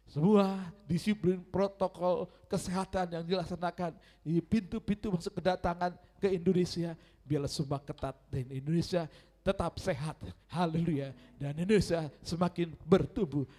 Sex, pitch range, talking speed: male, 140-180 Hz, 105 wpm